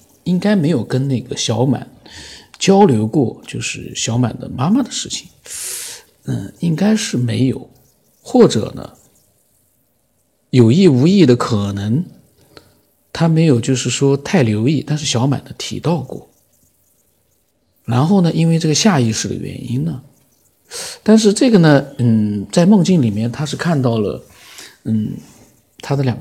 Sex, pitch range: male, 120-160 Hz